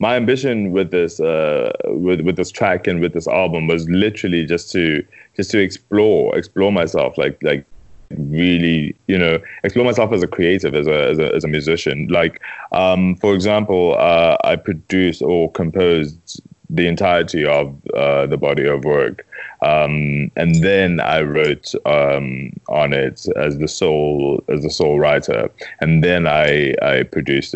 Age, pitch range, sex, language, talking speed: 20-39, 75-95 Hz, male, English, 165 wpm